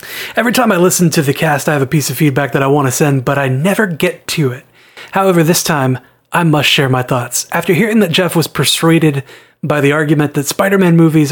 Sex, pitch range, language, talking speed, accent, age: male, 140-175 Hz, English, 235 wpm, American, 30-49